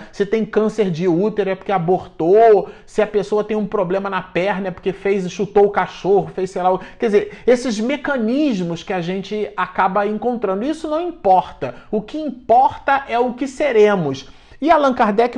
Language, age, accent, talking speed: Portuguese, 40-59, Brazilian, 185 wpm